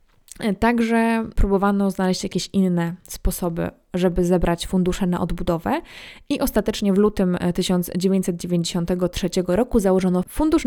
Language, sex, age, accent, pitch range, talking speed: Polish, female, 20-39, native, 180-205 Hz, 105 wpm